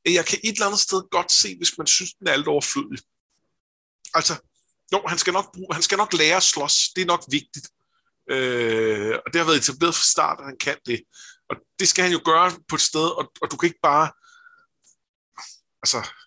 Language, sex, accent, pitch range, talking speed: Danish, male, native, 140-200 Hz, 220 wpm